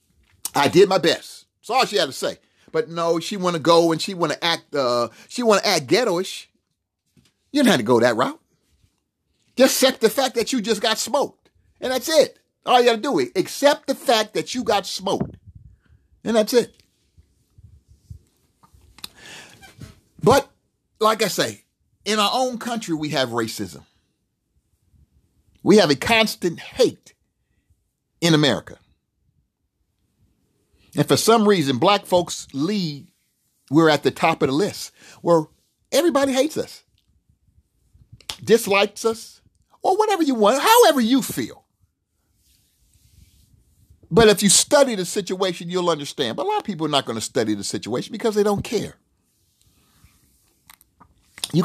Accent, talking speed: American, 150 wpm